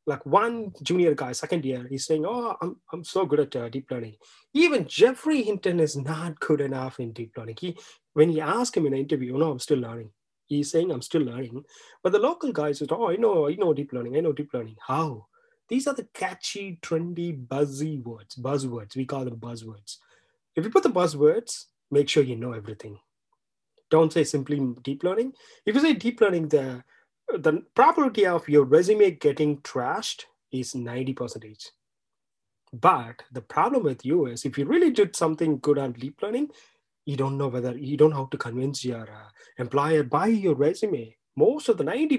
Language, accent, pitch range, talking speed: English, Indian, 130-205 Hz, 200 wpm